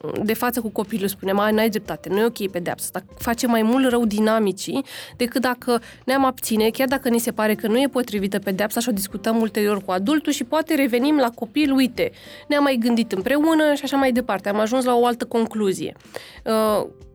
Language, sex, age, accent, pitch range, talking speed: Romanian, female, 20-39, native, 210-260 Hz, 205 wpm